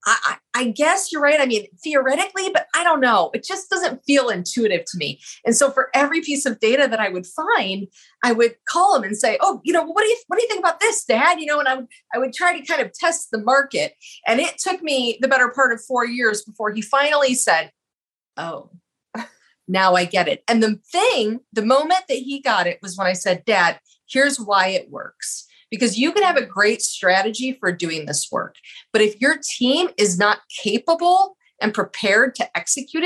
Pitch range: 210-295 Hz